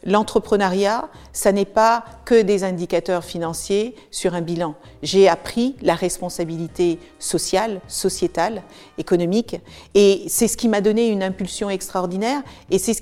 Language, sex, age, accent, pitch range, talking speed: French, female, 50-69, French, 180-225 Hz, 140 wpm